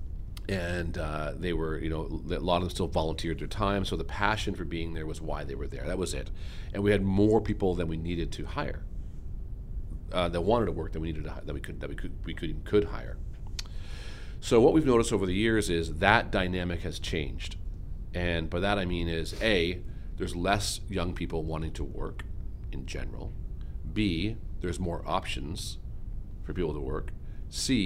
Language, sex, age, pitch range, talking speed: English, male, 40-59, 80-95 Hz, 205 wpm